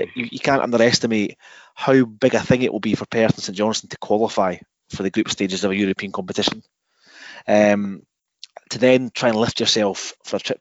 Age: 20-39